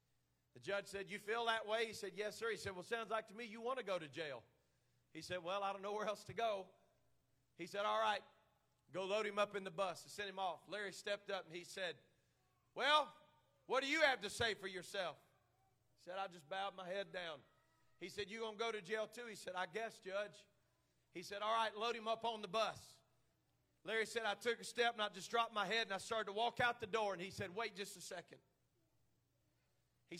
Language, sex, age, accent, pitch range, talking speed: English, male, 40-59, American, 175-215 Hz, 245 wpm